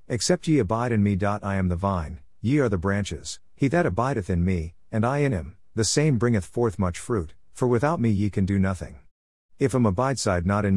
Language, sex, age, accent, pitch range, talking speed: English, male, 50-69, American, 90-115 Hz, 225 wpm